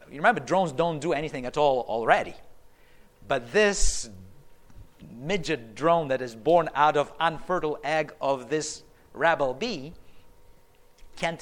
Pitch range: 130-175 Hz